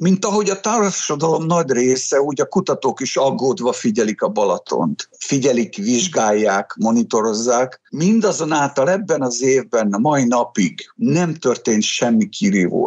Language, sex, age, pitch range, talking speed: Hungarian, male, 50-69, 115-175 Hz, 130 wpm